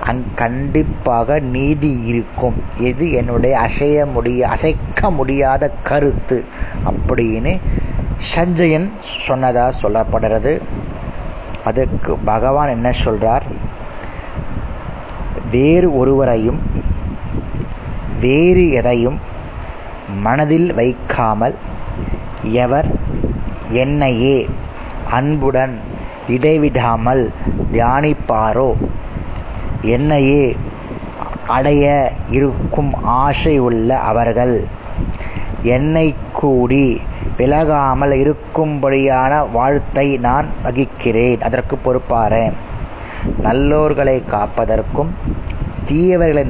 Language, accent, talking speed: Tamil, native, 50 wpm